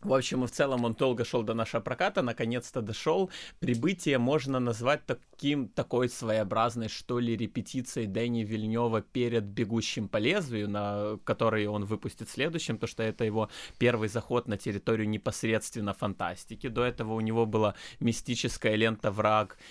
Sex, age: male, 20-39